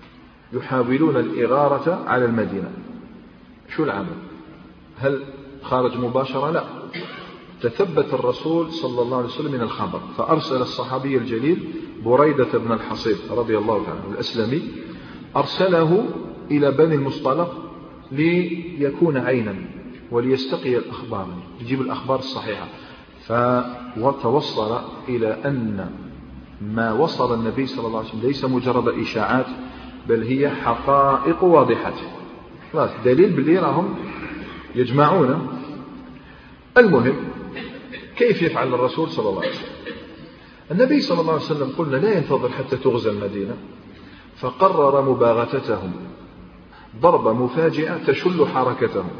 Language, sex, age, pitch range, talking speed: Arabic, male, 40-59, 120-150 Hz, 100 wpm